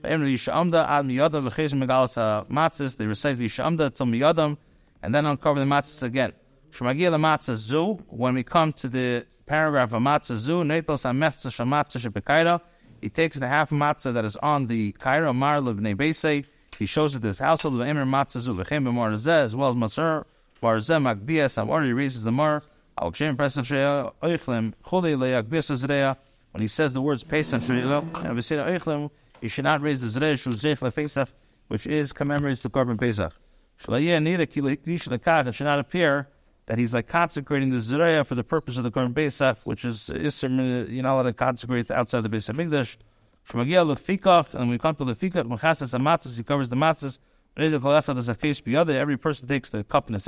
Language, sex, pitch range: English, male, 125-155 Hz